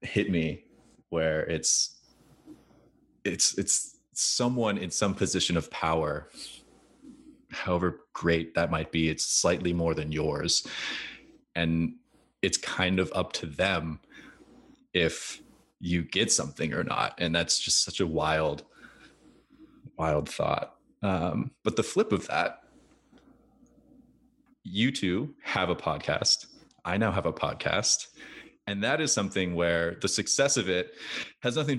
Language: English